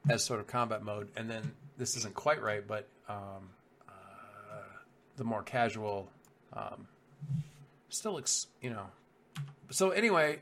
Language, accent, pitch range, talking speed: English, American, 110-140 Hz, 140 wpm